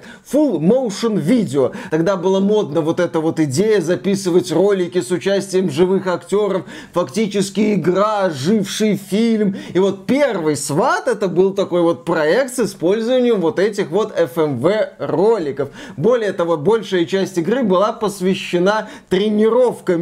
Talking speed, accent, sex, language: 130 wpm, native, male, Russian